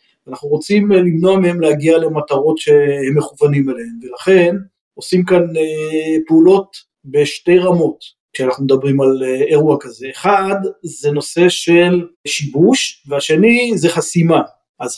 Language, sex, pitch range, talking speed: Hebrew, male, 145-185 Hz, 115 wpm